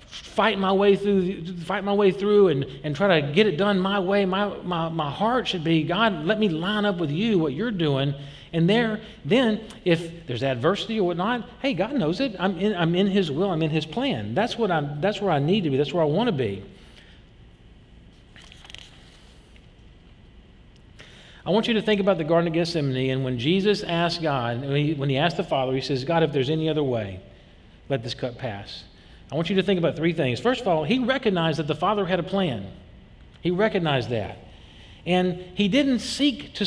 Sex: male